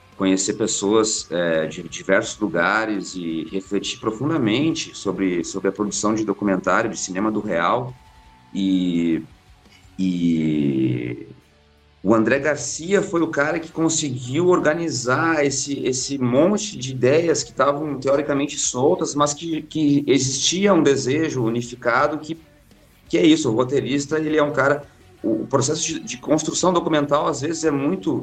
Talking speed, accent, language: 140 wpm, Brazilian, Portuguese